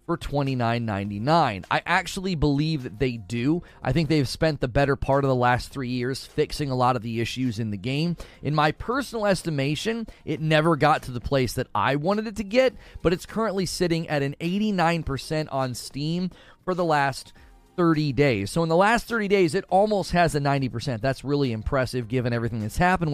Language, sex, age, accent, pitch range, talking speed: English, male, 30-49, American, 125-170 Hz, 200 wpm